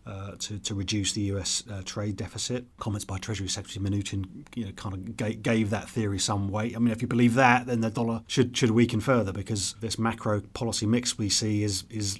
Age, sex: 30-49, male